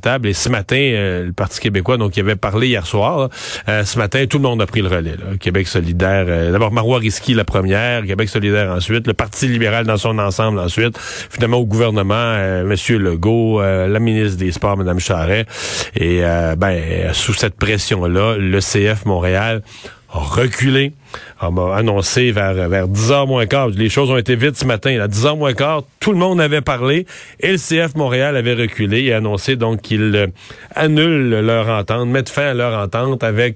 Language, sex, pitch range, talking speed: French, male, 100-130 Hz, 195 wpm